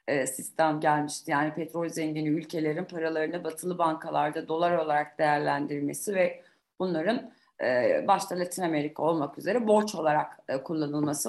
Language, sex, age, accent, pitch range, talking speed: Turkish, female, 40-59, native, 160-205 Hz, 115 wpm